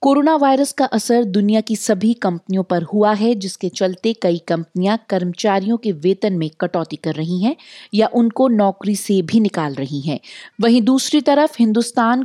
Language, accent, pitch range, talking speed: Hindi, native, 180-230 Hz, 170 wpm